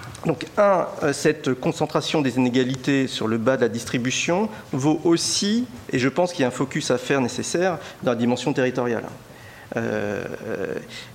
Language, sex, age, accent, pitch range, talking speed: French, male, 40-59, French, 115-155 Hz, 160 wpm